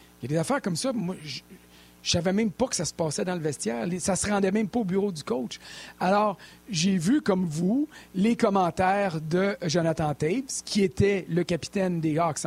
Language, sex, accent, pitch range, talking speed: French, male, Canadian, 165-215 Hz, 215 wpm